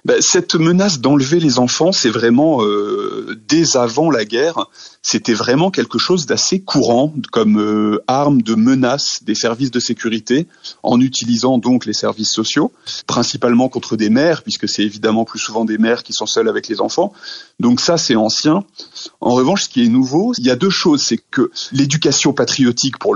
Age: 30-49